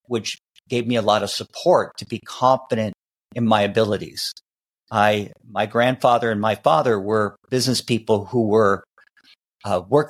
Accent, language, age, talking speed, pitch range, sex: American, English, 50-69, 155 wpm, 105-120 Hz, male